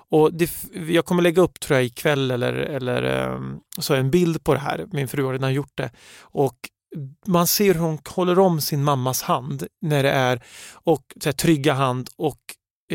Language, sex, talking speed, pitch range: Swedish, male, 200 wpm, 135-180 Hz